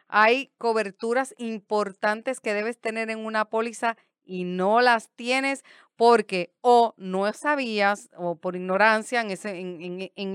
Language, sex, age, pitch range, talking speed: Spanish, female, 30-49, 205-255 Hz, 145 wpm